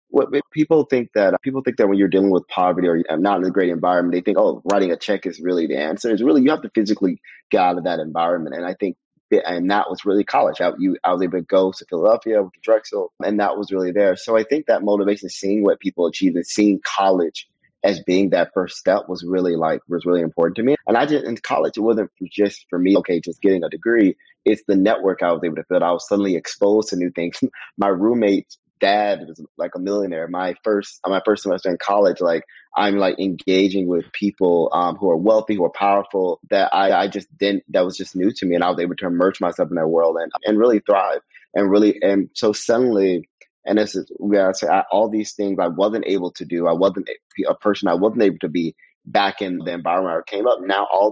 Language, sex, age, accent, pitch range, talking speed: English, male, 30-49, American, 90-115 Hz, 245 wpm